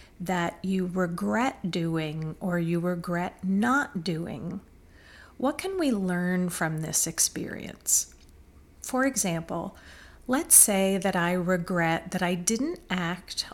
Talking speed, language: 120 wpm, English